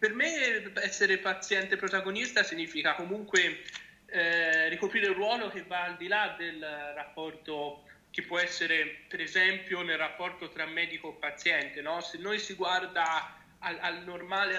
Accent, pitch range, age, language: native, 165-205 Hz, 30-49, Italian